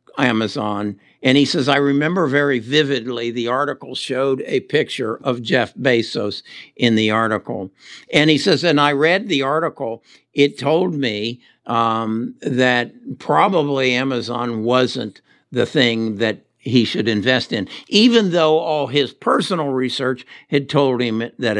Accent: American